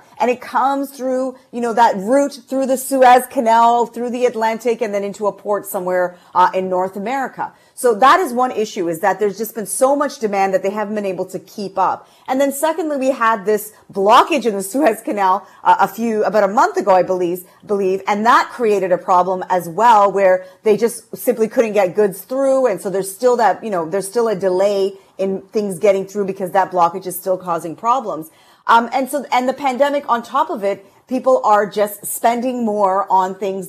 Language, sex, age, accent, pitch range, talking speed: English, female, 40-59, American, 195-245 Hz, 215 wpm